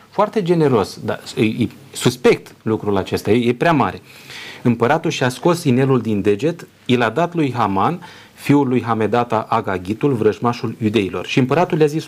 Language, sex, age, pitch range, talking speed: Romanian, male, 30-49, 105-130 Hz, 150 wpm